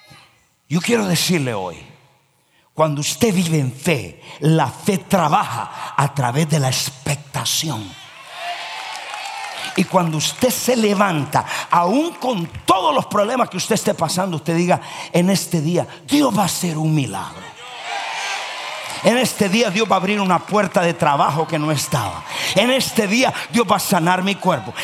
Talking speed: 155 wpm